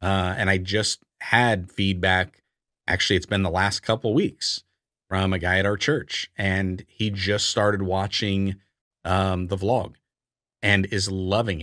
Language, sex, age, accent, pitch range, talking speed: English, male, 30-49, American, 95-130 Hz, 160 wpm